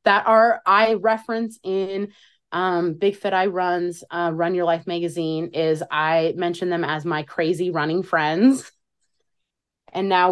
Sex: female